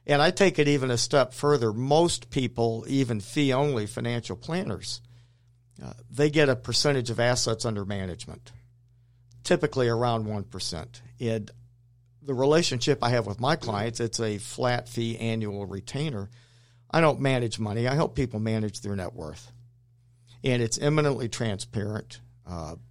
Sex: male